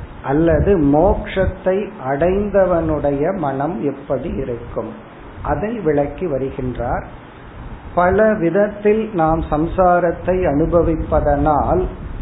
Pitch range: 145-190 Hz